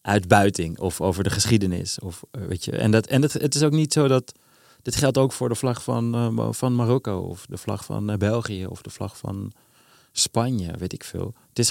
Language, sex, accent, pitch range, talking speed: Dutch, male, Dutch, 95-115 Hz, 200 wpm